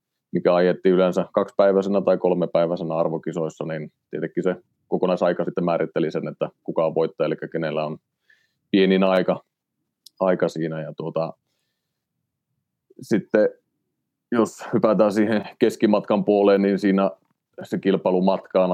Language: Finnish